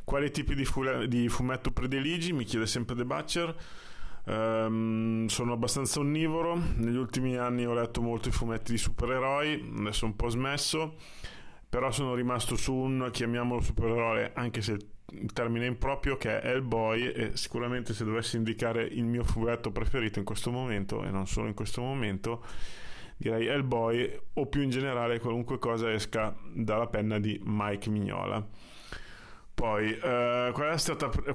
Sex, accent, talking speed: male, native, 155 wpm